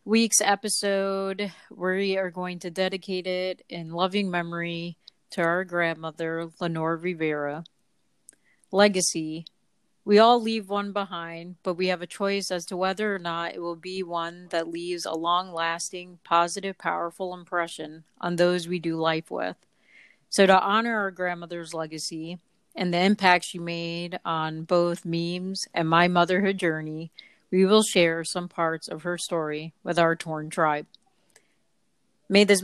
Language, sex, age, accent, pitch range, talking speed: English, female, 30-49, American, 170-195 Hz, 150 wpm